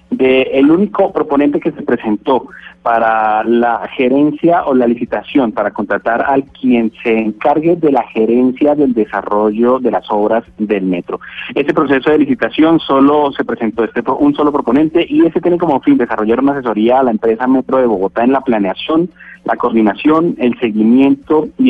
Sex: male